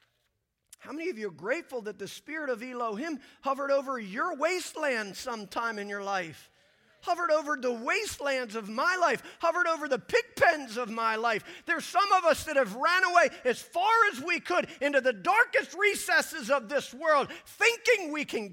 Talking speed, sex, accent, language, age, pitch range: 185 wpm, male, American, English, 40-59, 235-335 Hz